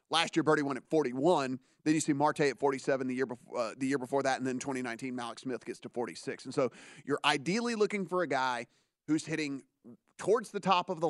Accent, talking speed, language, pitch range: American, 230 wpm, English, 135-155 Hz